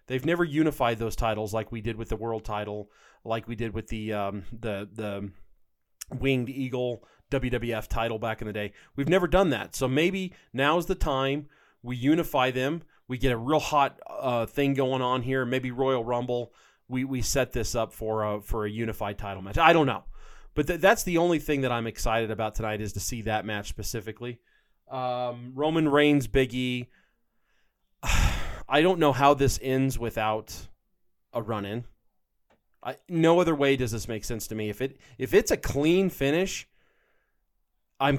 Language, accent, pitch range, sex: English, American, 105-135 Hz, male